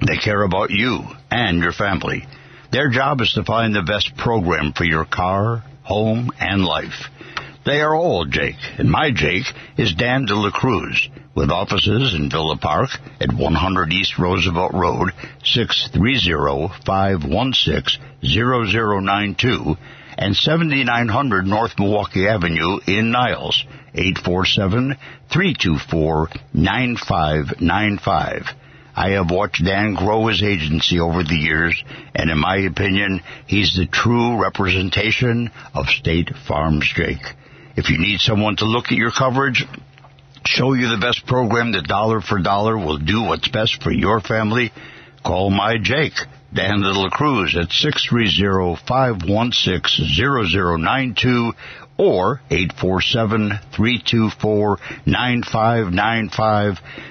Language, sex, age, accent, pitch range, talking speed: English, male, 60-79, American, 90-120 Hz, 115 wpm